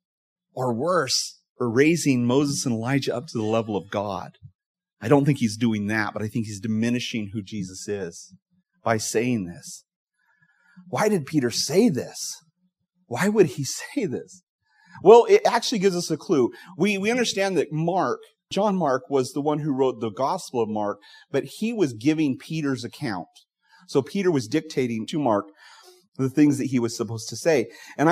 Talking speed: 180 wpm